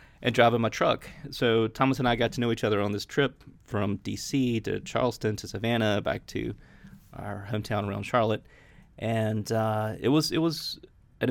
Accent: American